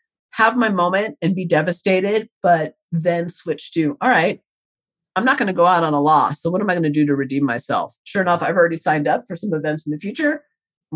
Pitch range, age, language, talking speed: 155-205 Hz, 30-49, English, 240 wpm